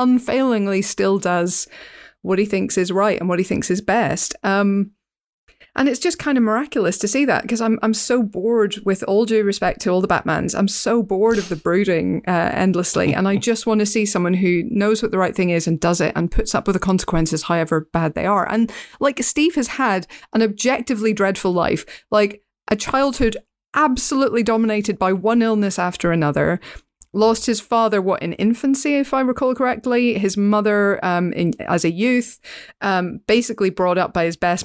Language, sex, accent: English, female, British